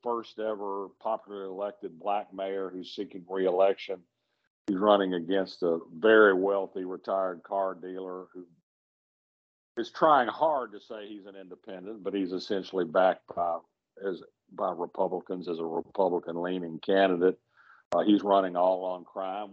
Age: 50-69